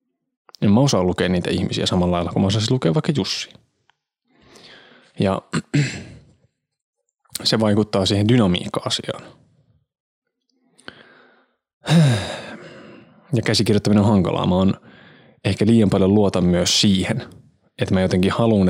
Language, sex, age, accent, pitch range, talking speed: Finnish, male, 20-39, native, 95-115 Hz, 120 wpm